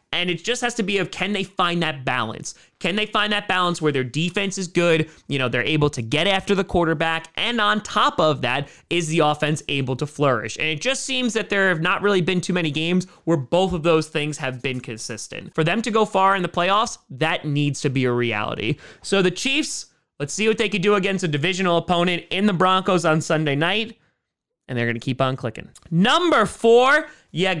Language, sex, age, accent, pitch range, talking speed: English, male, 20-39, American, 145-200 Hz, 230 wpm